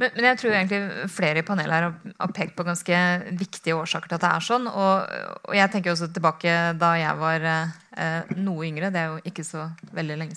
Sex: female